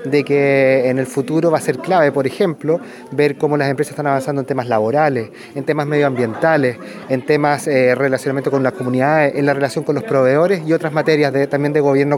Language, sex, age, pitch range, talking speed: Spanish, male, 30-49, 130-160 Hz, 205 wpm